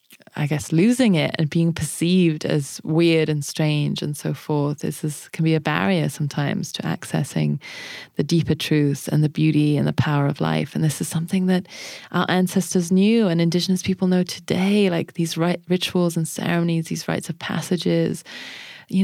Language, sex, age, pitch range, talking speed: English, female, 20-39, 160-190 Hz, 180 wpm